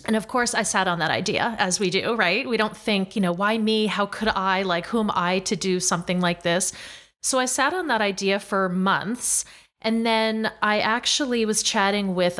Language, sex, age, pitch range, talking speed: English, female, 30-49, 185-225 Hz, 225 wpm